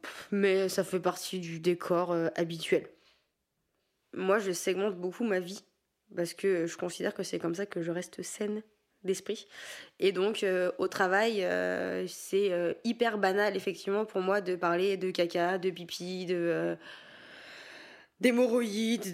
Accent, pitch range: French, 180-225 Hz